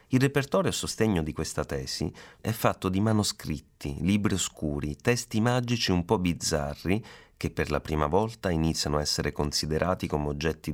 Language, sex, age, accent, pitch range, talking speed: Italian, male, 30-49, native, 75-95 Hz, 160 wpm